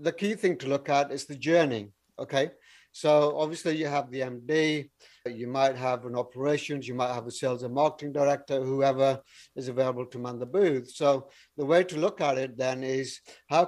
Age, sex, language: 60-79, male, English